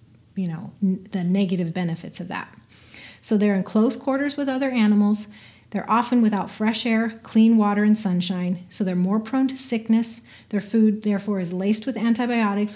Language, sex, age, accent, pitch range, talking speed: English, female, 30-49, American, 185-220 Hz, 175 wpm